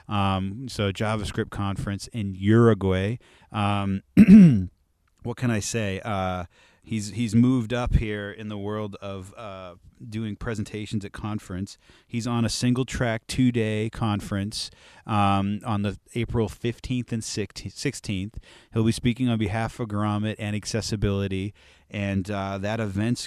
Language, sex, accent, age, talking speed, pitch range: English, male, American, 30-49, 140 wpm, 95-115 Hz